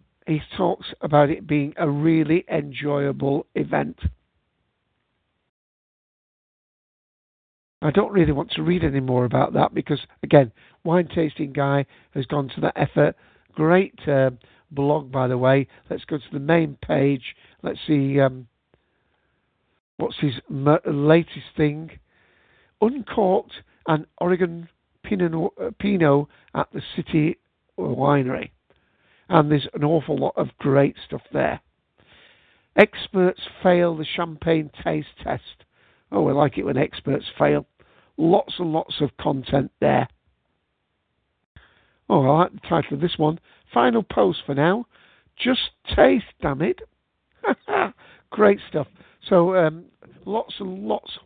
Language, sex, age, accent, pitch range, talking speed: English, male, 60-79, British, 140-175 Hz, 125 wpm